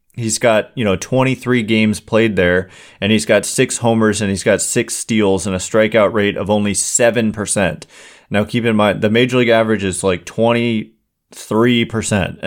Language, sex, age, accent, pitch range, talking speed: English, male, 30-49, American, 105-125 Hz, 175 wpm